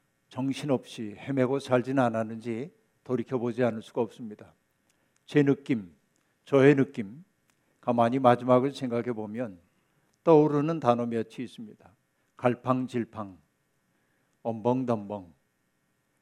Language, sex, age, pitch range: Korean, male, 60-79, 115-145 Hz